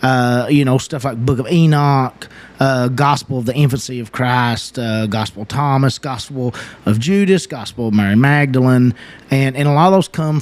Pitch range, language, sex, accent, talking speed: 110-135 Hz, English, male, American, 190 wpm